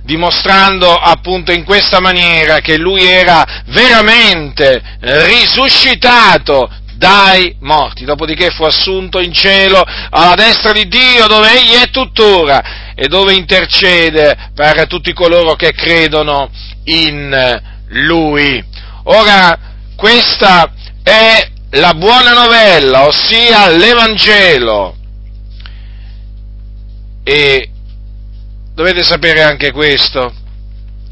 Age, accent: 40-59, native